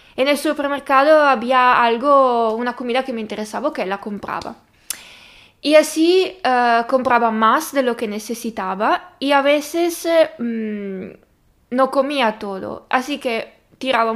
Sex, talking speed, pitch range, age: female, 135 wpm, 225-285 Hz, 20-39